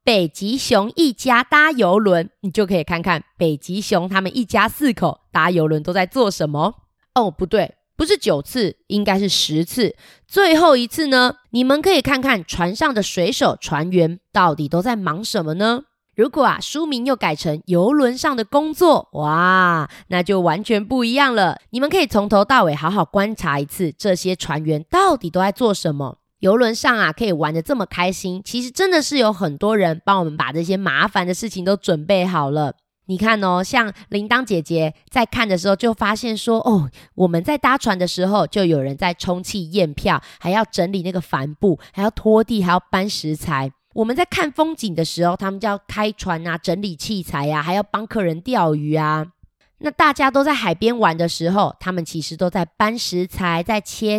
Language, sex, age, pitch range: Chinese, female, 20-39, 170-235 Hz